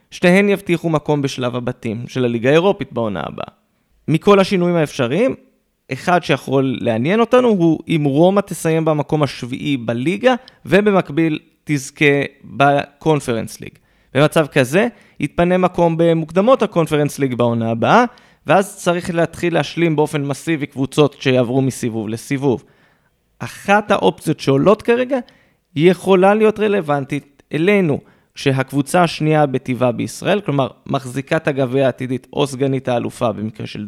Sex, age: male, 20-39